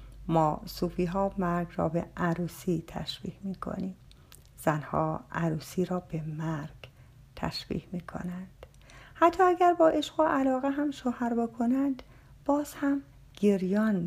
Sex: female